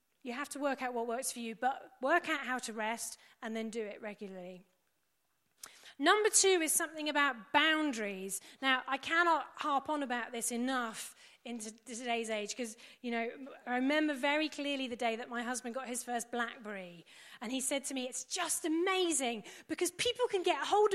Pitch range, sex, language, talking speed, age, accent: 245-330 Hz, female, English, 190 wpm, 30-49, British